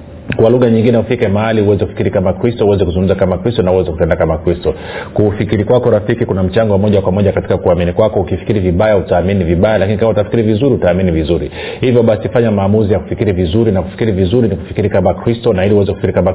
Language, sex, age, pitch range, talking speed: Swahili, male, 40-59, 95-110 Hz, 220 wpm